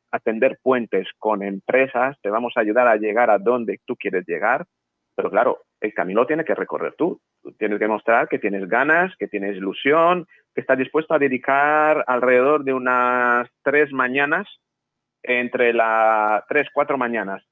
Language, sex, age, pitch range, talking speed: Spanish, male, 40-59, 110-140 Hz, 165 wpm